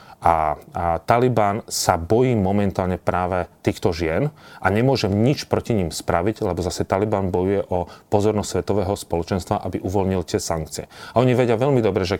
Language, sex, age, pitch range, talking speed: Slovak, male, 30-49, 90-105 Hz, 160 wpm